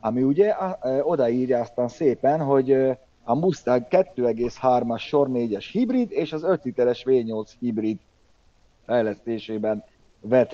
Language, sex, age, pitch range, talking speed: Hungarian, male, 30-49, 110-130 Hz, 100 wpm